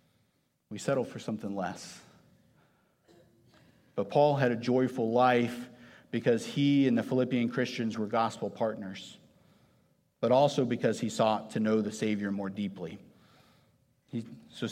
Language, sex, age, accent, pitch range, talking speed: English, male, 50-69, American, 115-135 Hz, 130 wpm